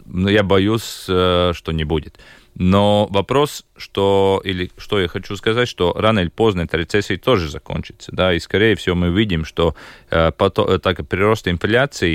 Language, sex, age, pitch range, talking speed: Russian, male, 30-49, 85-100 Hz, 170 wpm